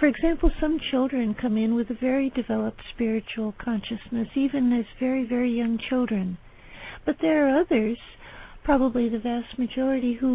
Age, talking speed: 60-79, 155 wpm